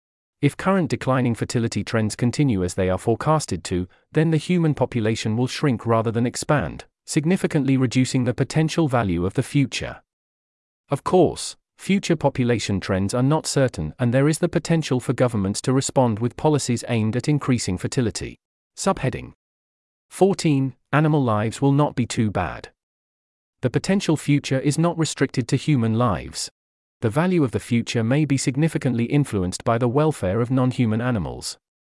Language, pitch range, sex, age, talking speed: English, 110-145 Hz, male, 40-59, 160 wpm